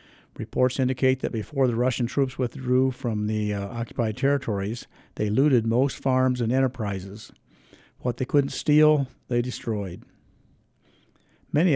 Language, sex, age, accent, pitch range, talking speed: English, male, 50-69, American, 115-135 Hz, 135 wpm